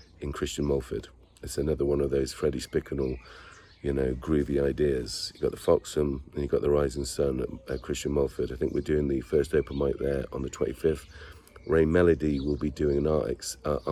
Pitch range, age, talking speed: 70-80 Hz, 40-59, 210 wpm